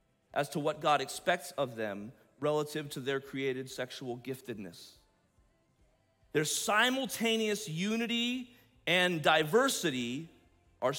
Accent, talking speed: American, 105 wpm